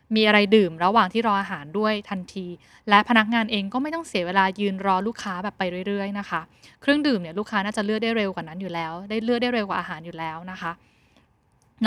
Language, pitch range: Thai, 195-240 Hz